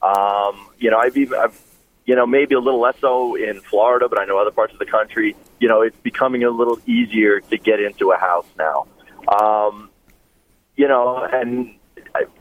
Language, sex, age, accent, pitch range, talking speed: English, male, 30-49, American, 115-165 Hz, 190 wpm